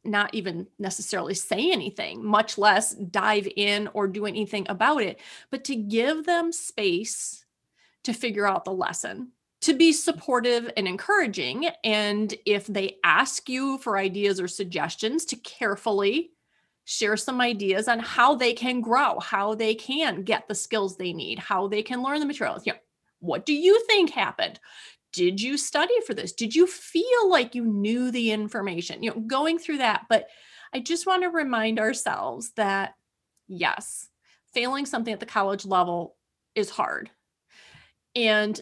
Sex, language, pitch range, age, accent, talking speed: female, English, 205-260 Hz, 30-49, American, 160 wpm